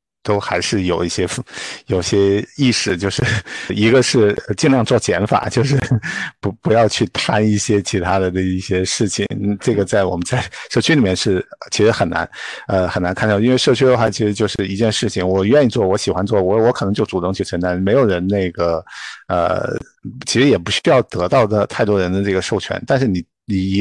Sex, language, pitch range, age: male, Chinese, 90-105 Hz, 50-69